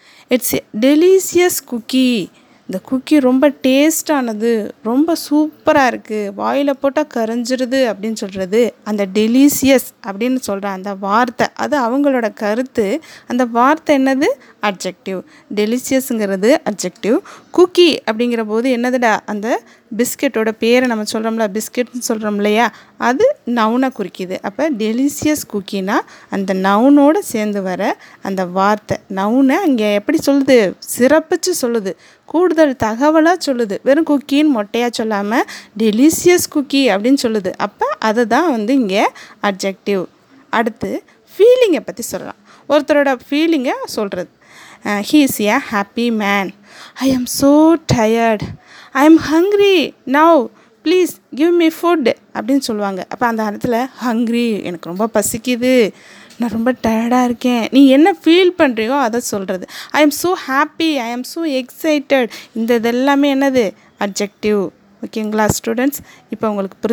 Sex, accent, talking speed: female, Indian, 100 wpm